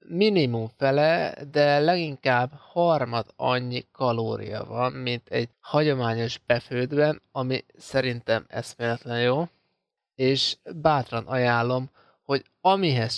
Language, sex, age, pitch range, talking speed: Hungarian, male, 20-39, 120-145 Hz, 95 wpm